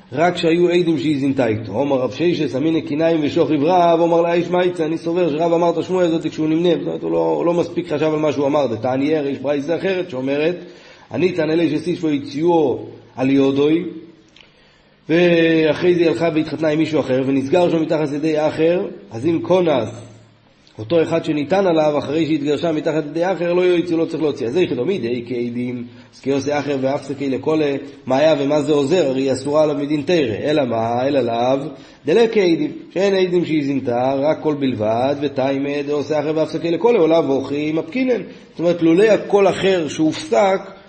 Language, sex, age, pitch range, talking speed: Hebrew, male, 30-49, 140-170 Hz, 205 wpm